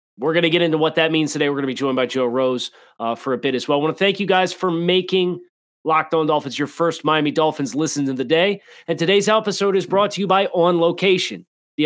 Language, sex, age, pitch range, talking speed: English, male, 30-49, 140-180 Hz, 270 wpm